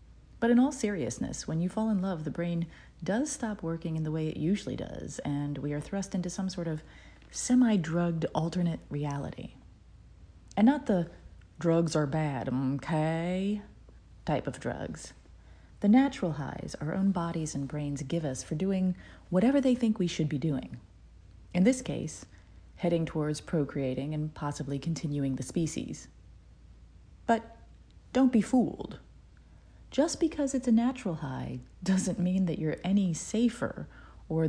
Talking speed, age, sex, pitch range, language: 155 wpm, 40-59, female, 140-190 Hz, English